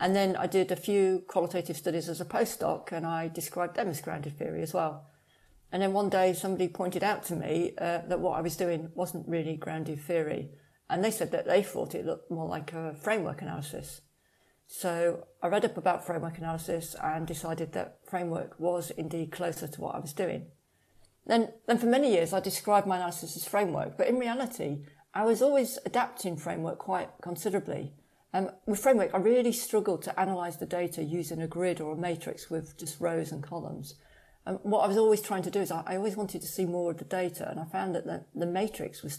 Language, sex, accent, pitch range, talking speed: English, female, British, 165-195 Hz, 215 wpm